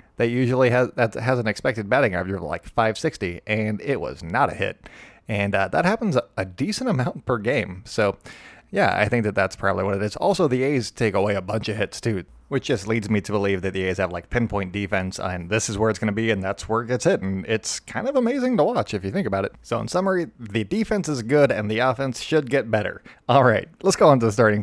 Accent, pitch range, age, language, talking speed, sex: American, 100-125 Hz, 30-49, English, 265 wpm, male